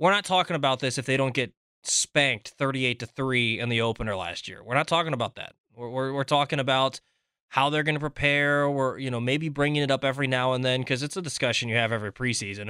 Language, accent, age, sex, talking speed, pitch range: English, American, 20-39, male, 245 wpm, 130-150 Hz